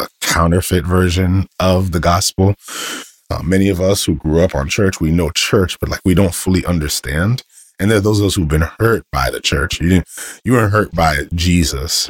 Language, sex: English, male